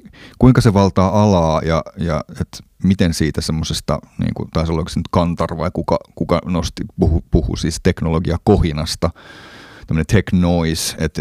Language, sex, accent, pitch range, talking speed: Finnish, male, native, 80-90 Hz, 160 wpm